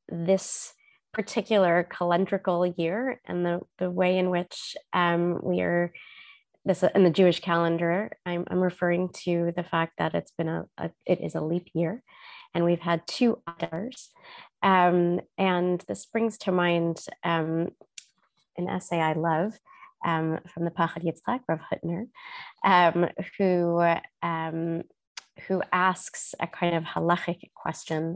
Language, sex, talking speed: English, female, 145 wpm